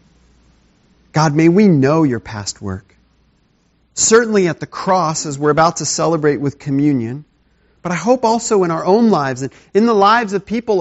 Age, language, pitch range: 40-59, English, 130-195 Hz